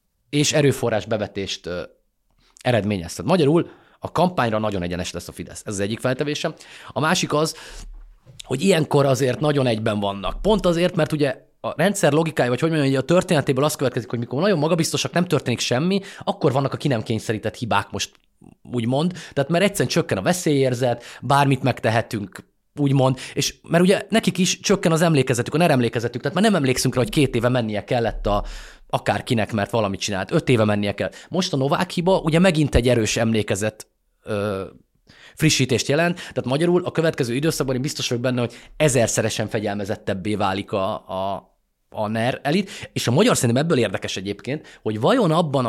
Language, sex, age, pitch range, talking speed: Hungarian, male, 30-49, 110-155 Hz, 175 wpm